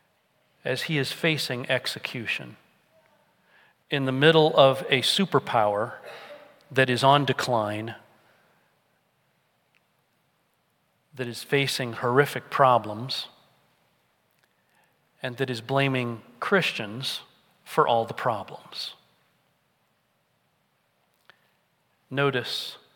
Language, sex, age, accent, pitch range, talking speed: English, male, 40-59, American, 125-145 Hz, 80 wpm